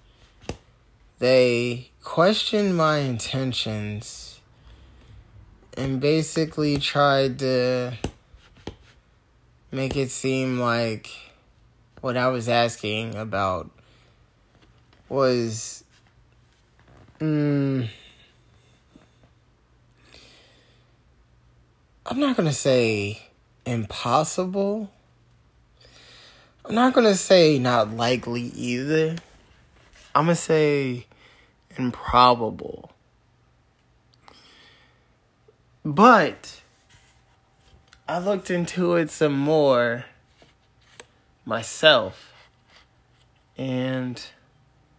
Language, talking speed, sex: English, 65 wpm, male